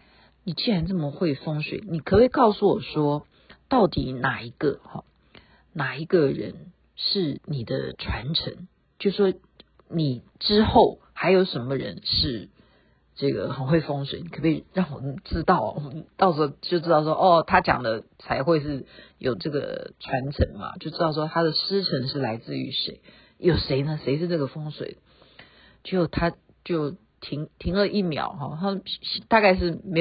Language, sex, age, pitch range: Chinese, female, 50-69, 155-210 Hz